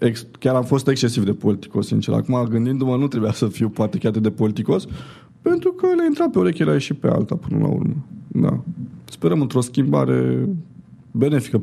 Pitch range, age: 110-145 Hz, 20-39